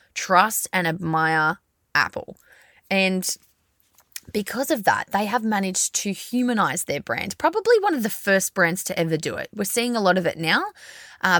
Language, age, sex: English, 20-39, female